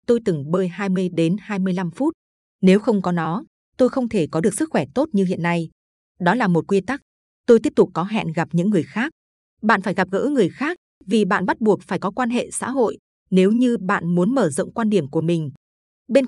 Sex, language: female, Vietnamese